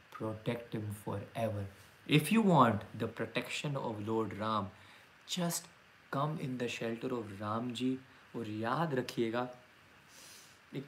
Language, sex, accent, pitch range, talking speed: Hindi, male, native, 115-150 Hz, 125 wpm